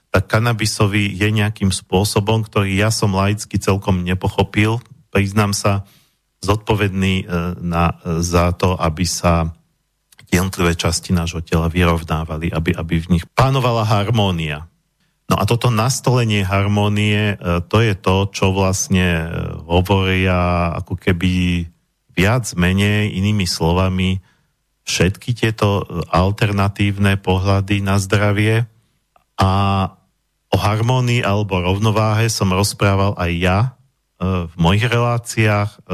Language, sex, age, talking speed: Slovak, male, 40-59, 110 wpm